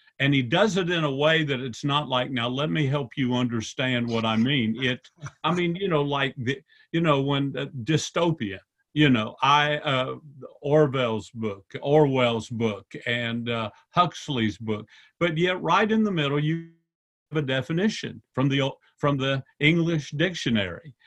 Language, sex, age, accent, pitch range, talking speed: English, male, 50-69, American, 120-150 Hz, 170 wpm